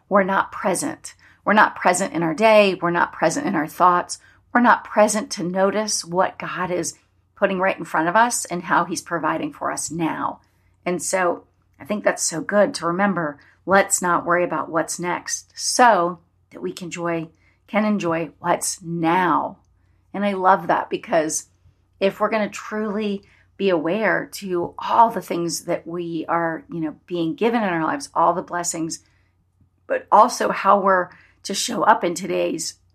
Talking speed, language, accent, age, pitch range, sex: 180 wpm, English, American, 40-59, 165-205 Hz, female